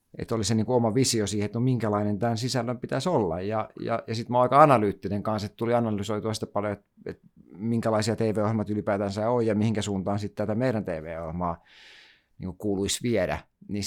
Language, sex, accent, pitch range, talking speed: Finnish, male, native, 100-120 Hz, 190 wpm